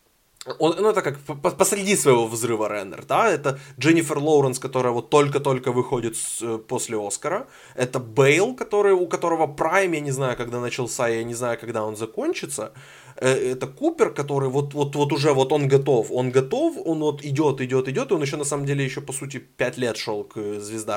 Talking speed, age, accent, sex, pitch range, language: 185 wpm, 20-39, native, male, 125-150 Hz, Ukrainian